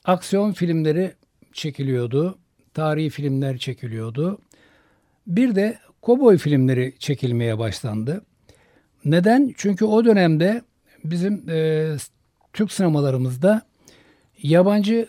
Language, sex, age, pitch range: Turkish, male, 60-79, 140-195 Hz